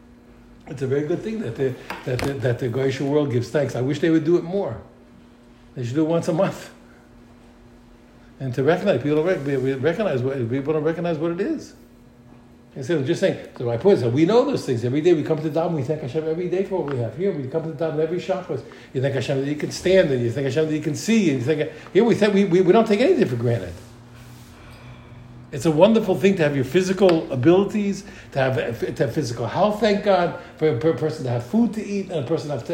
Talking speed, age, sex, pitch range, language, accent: 255 wpm, 60-79, male, 125-195 Hz, English, American